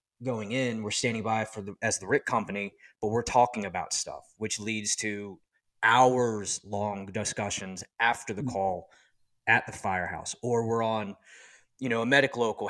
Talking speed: 170 wpm